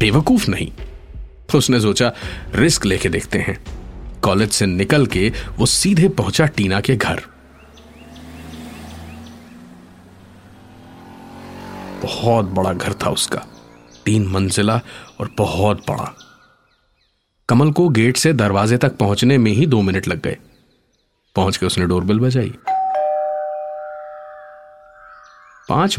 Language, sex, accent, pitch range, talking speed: Hindi, male, native, 95-145 Hz, 110 wpm